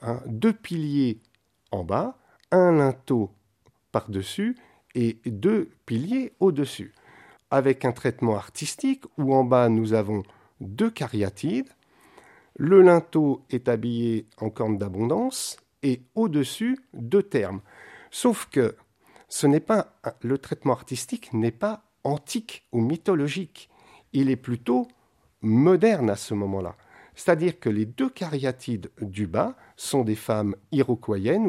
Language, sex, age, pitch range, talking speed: French, male, 50-69, 110-145 Hz, 120 wpm